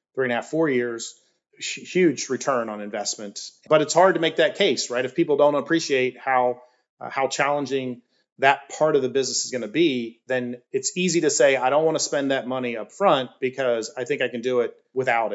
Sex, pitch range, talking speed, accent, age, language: male, 125-165 Hz, 225 wpm, American, 30-49, English